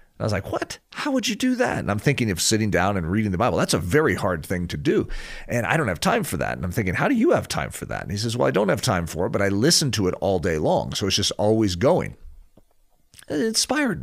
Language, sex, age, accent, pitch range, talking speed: English, male, 40-59, American, 95-125 Hz, 295 wpm